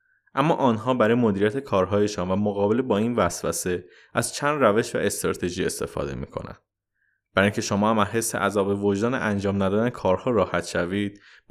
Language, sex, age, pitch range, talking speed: Persian, male, 20-39, 100-135 Hz, 155 wpm